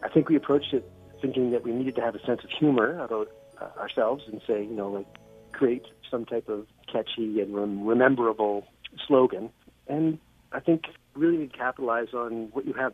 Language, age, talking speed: English, 40-59, 185 wpm